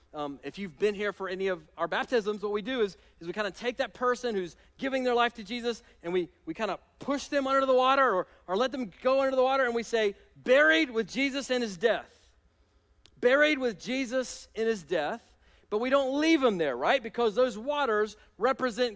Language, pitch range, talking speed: English, 170-260 Hz, 225 wpm